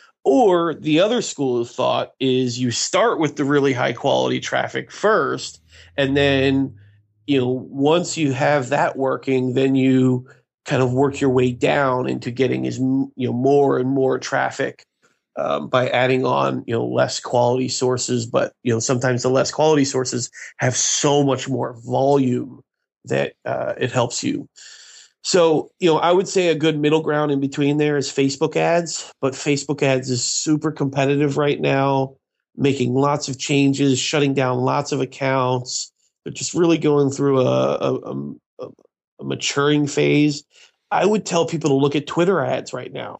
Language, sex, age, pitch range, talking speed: English, male, 30-49, 130-150 Hz, 170 wpm